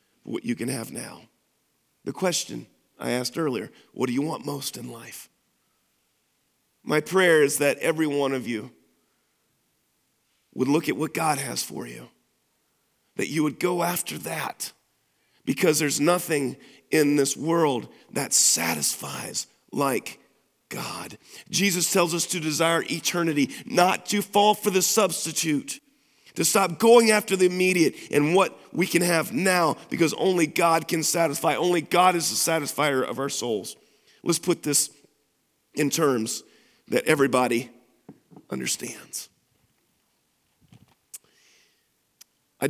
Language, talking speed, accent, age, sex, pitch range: English, 135 wpm, American, 40-59, male, 145-190 Hz